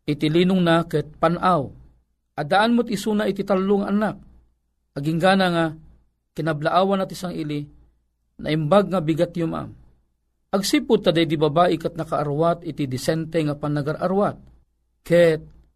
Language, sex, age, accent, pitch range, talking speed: Filipino, male, 40-59, native, 150-195 Hz, 135 wpm